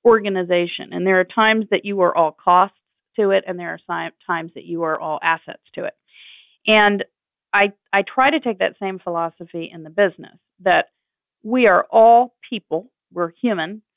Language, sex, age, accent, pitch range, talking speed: English, female, 40-59, American, 170-215 Hz, 180 wpm